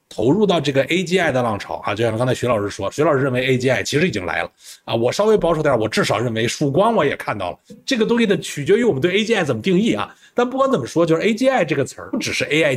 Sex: male